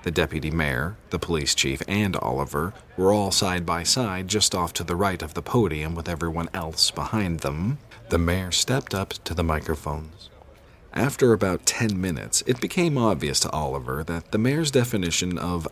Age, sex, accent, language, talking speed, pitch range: 40-59, male, American, English, 180 wpm, 80-115 Hz